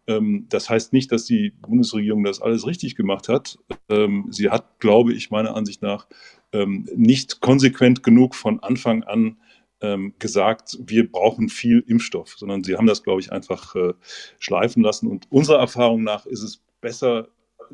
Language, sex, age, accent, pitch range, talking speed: German, male, 40-59, German, 110-145 Hz, 150 wpm